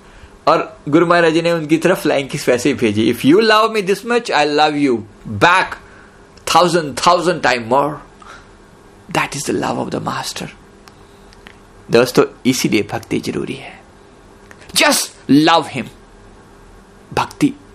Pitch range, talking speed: 120-165 Hz, 135 wpm